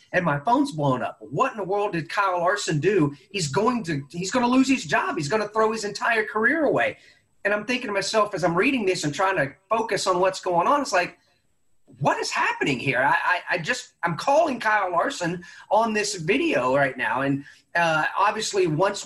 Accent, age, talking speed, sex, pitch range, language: American, 30-49, 220 wpm, male, 155-205 Hz, English